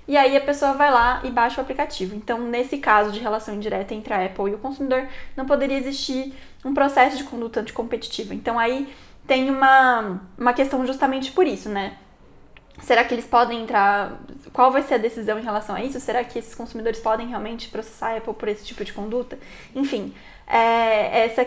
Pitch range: 225-265 Hz